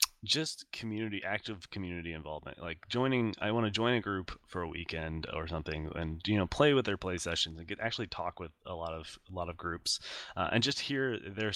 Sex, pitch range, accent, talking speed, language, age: male, 85-105 Hz, American, 225 wpm, English, 20-39